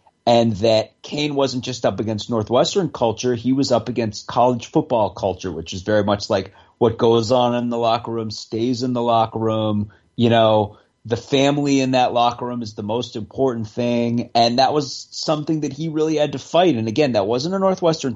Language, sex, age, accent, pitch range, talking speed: English, male, 30-49, American, 115-155 Hz, 205 wpm